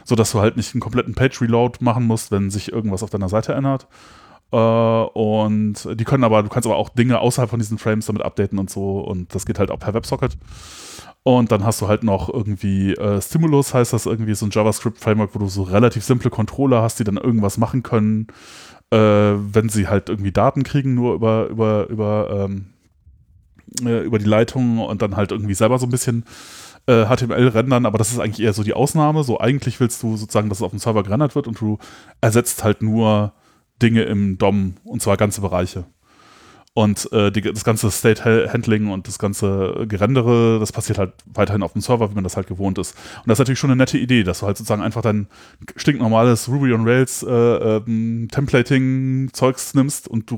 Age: 20-39